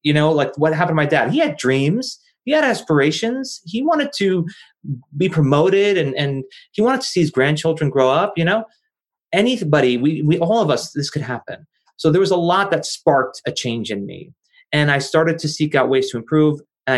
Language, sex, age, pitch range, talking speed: English, male, 30-49, 140-175 Hz, 215 wpm